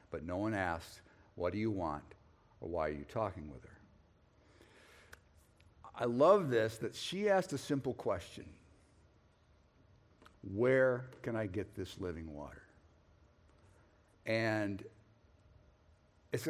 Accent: American